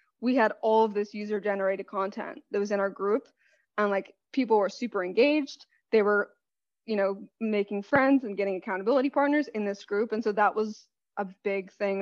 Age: 20-39